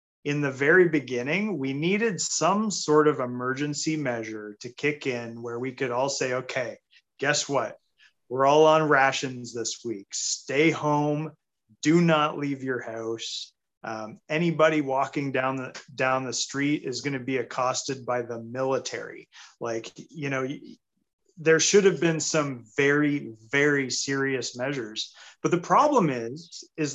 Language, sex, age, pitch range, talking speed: English, male, 30-49, 125-160 Hz, 150 wpm